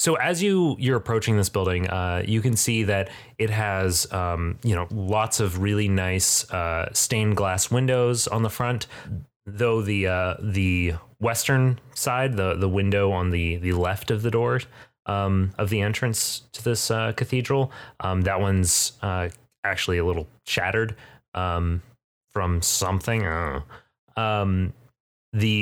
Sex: male